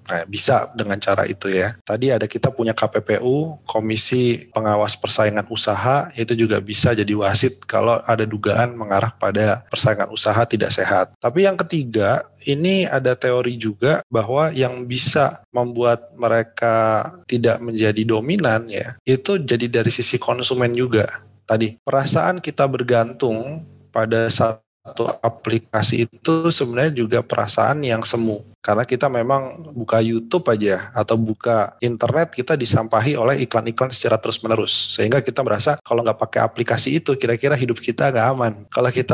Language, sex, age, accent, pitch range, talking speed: Indonesian, male, 30-49, native, 110-130 Hz, 145 wpm